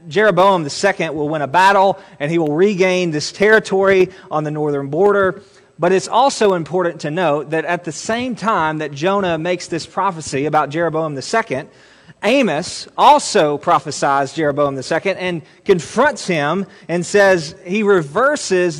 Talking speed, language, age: 150 wpm, English, 30-49